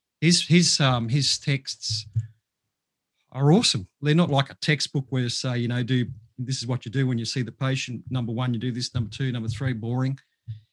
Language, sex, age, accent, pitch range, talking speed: English, male, 40-59, Australian, 125-145 Hz, 215 wpm